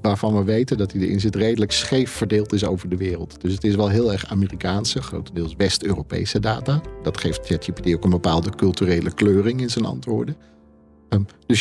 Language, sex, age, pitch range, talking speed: Dutch, male, 50-69, 95-120 Hz, 185 wpm